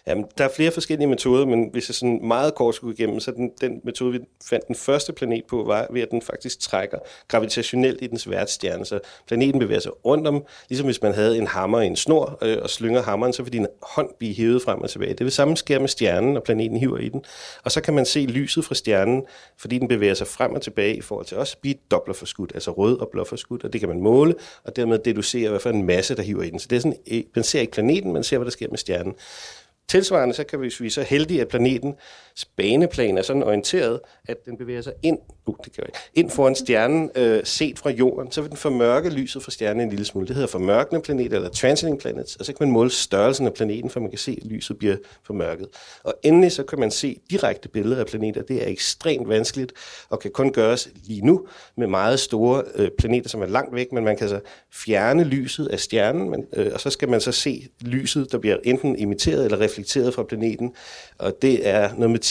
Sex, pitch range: male, 115-135 Hz